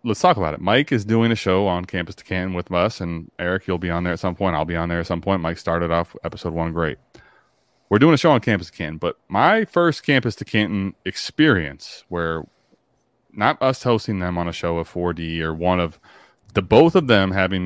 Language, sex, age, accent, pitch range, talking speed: English, male, 20-39, American, 85-105 Hz, 240 wpm